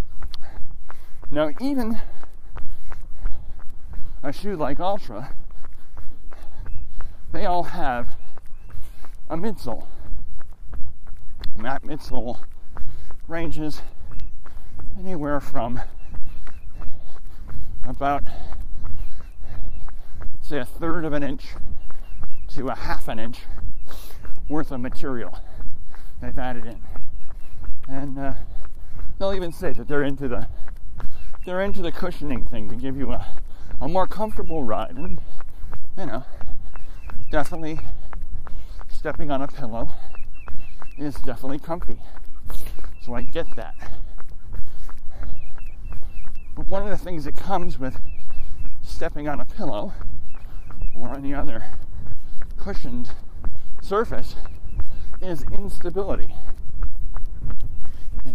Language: English